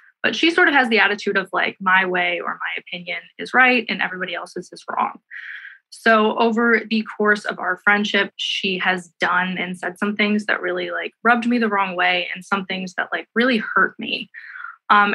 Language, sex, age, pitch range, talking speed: English, female, 20-39, 185-235 Hz, 205 wpm